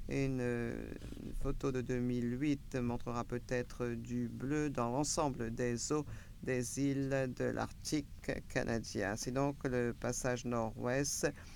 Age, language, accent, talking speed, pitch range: 50-69, English, French, 115 wpm, 120-140 Hz